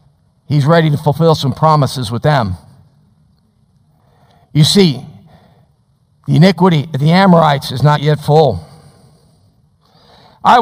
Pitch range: 165-235 Hz